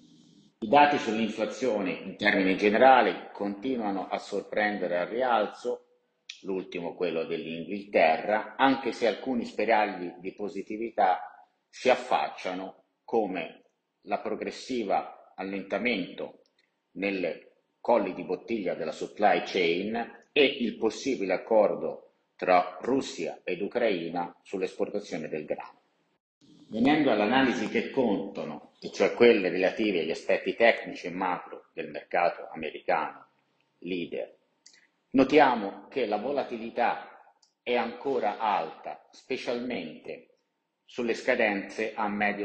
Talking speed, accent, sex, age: 100 wpm, native, male, 50-69